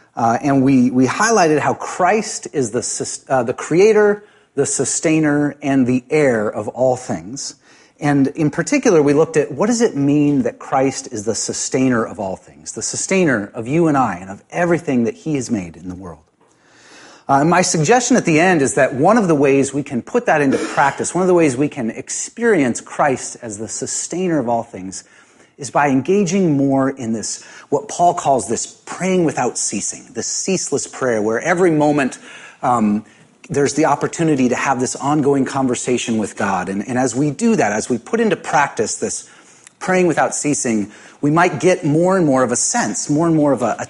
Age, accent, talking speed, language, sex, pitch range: 30-49, American, 200 wpm, English, male, 125-170 Hz